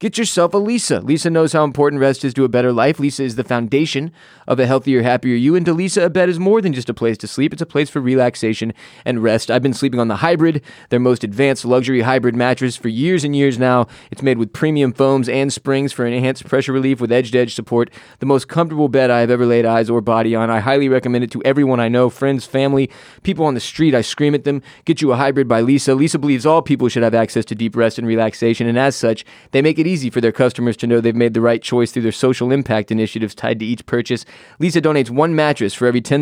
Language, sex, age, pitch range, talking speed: English, male, 20-39, 115-140 Hz, 255 wpm